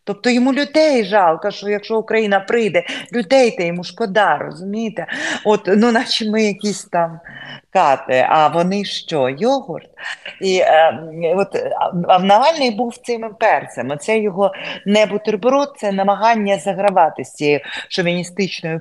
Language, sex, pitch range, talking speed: Ukrainian, female, 140-205 Hz, 125 wpm